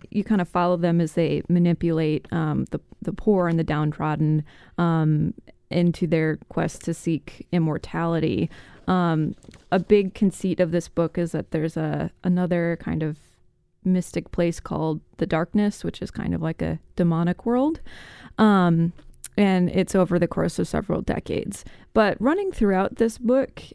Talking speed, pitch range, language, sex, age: 160 wpm, 165-195 Hz, English, female, 20-39